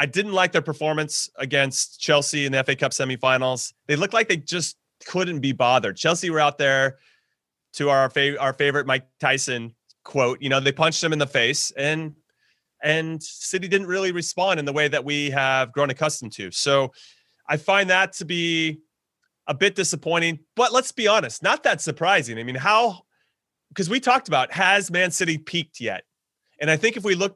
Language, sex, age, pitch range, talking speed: English, male, 30-49, 130-165 Hz, 195 wpm